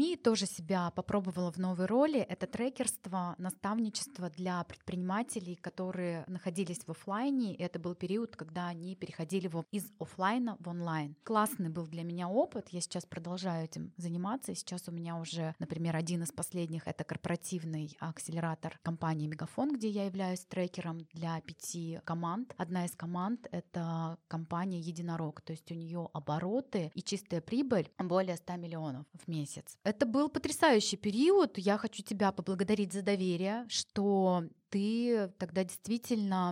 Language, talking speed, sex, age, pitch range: Russian, 150 wpm, female, 20-39, 170-220 Hz